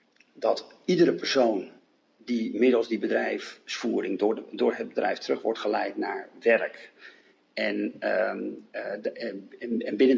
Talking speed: 135 wpm